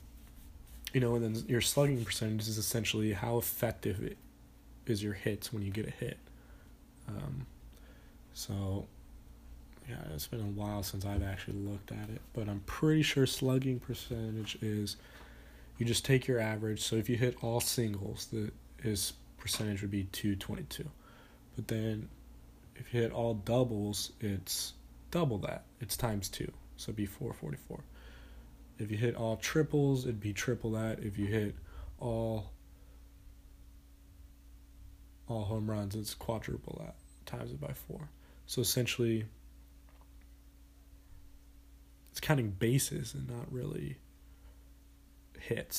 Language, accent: English, American